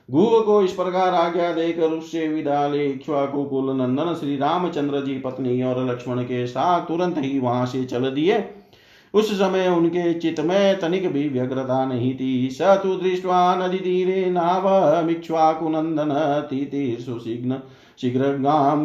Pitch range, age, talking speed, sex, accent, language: 130-180 Hz, 50-69, 120 wpm, male, native, Hindi